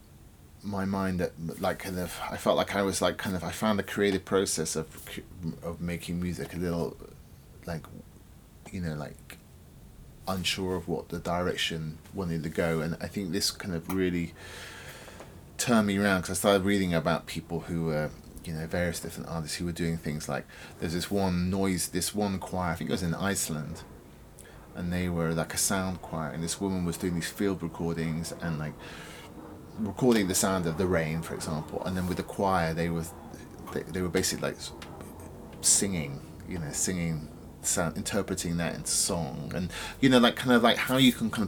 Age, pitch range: 30-49, 80-95 Hz